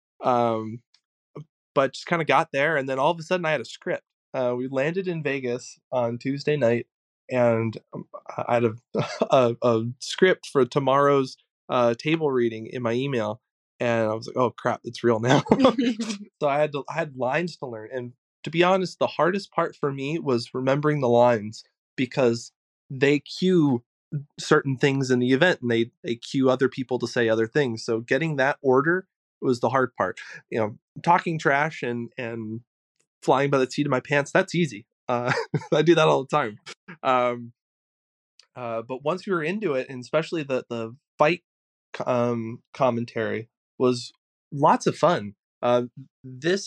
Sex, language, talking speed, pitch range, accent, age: male, English, 180 wpm, 120-150 Hz, American, 20-39